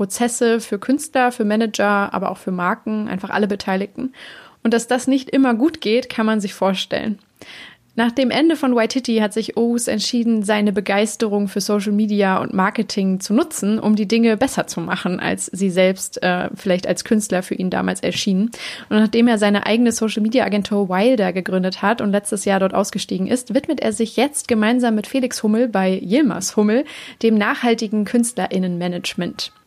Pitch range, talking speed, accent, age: 200-240 Hz, 180 wpm, German, 30-49